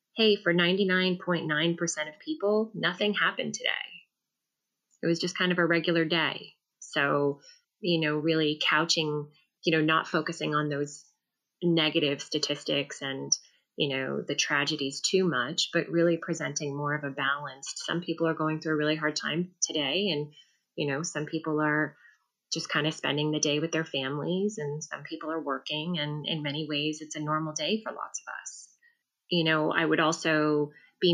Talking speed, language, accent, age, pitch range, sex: 175 wpm, English, American, 20-39, 150-180 Hz, female